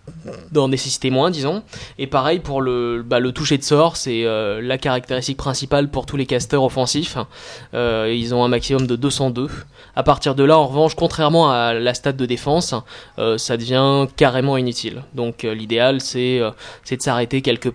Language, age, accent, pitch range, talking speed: French, 20-39, French, 120-140 Hz, 190 wpm